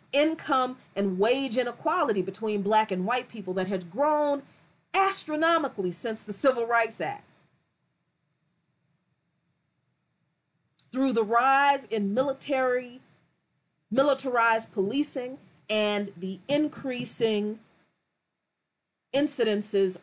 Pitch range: 190-275 Hz